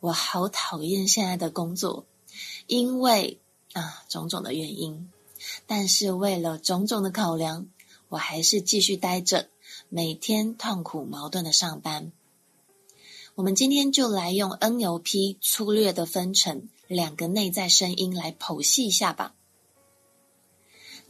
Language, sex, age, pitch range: Chinese, female, 20-39, 170-220 Hz